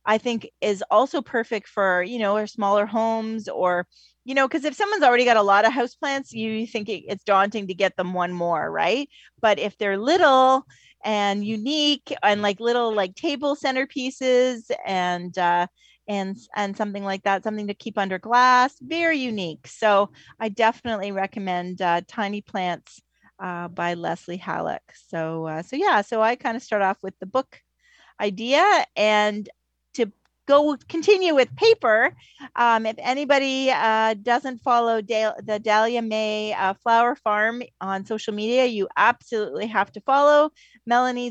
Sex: female